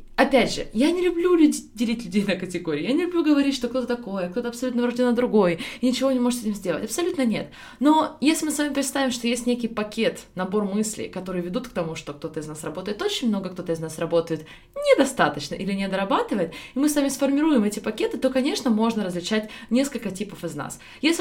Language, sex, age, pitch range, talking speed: Russian, female, 20-39, 165-250 Hz, 220 wpm